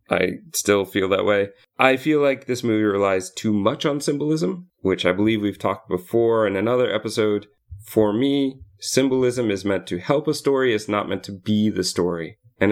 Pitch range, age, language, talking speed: 100-130 Hz, 30-49, English, 195 wpm